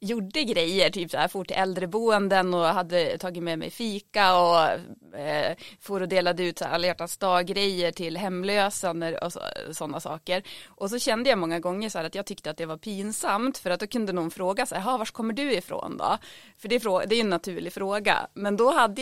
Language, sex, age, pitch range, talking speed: Swedish, female, 30-49, 170-210 Hz, 210 wpm